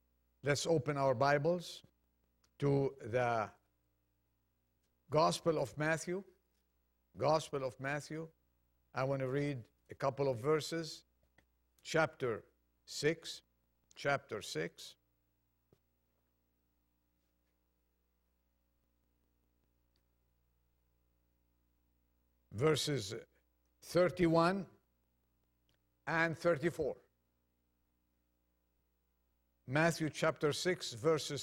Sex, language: male, English